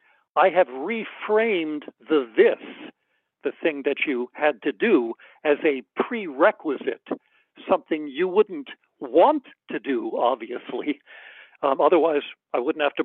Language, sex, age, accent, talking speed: English, male, 60-79, American, 130 wpm